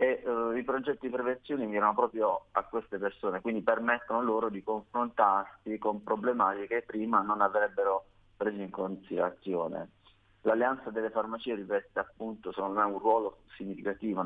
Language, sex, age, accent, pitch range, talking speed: Italian, male, 30-49, native, 100-115 Hz, 140 wpm